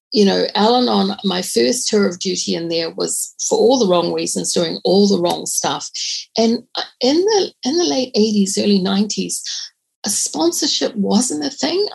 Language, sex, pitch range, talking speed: English, female, 180-220 Hz, 175 wpm